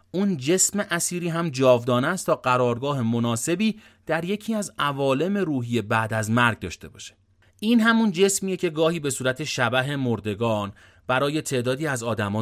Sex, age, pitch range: male, 30-49, 110-155 Hz